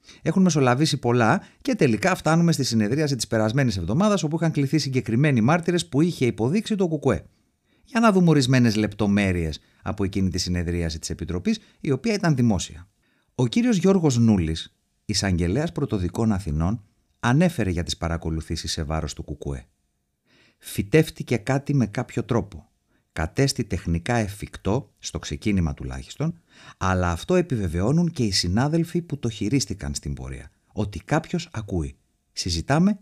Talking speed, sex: 140 wpm, male